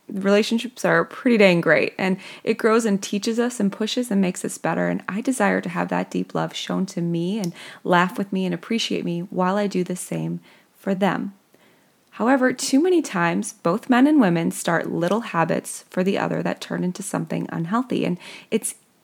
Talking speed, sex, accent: 200 wpm, female, American